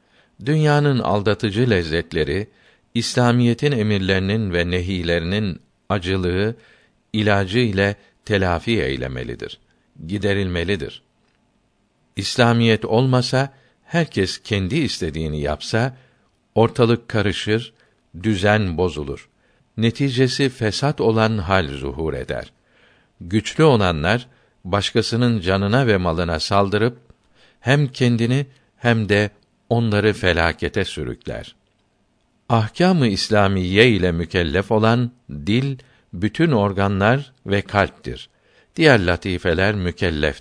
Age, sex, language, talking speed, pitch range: 60-79, male, Turkish, 85 wpm, 90-120 Hz